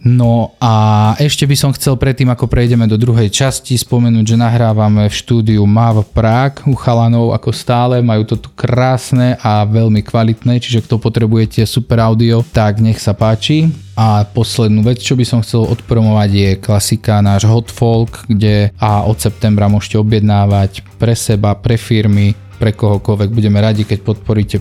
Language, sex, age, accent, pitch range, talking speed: Czech, male, 20-39, Slovak, 105-125 Hz, 170 wpm